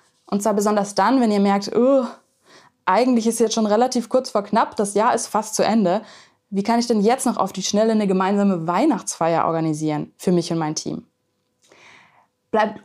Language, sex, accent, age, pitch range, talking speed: German, female, German, 20-39, 180-245 Hz, 190 wpm